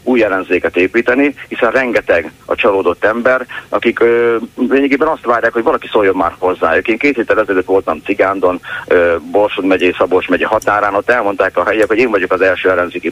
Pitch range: 95-140 Hz